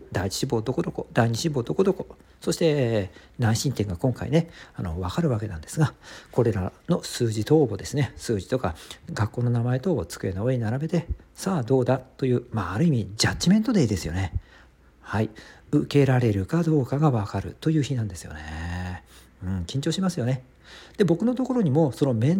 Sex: male